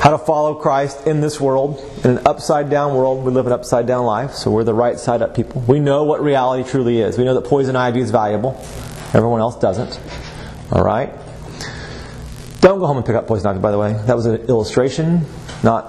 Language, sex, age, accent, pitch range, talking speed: English, male, 30-49, American, 115-145 Hz, 205 wpm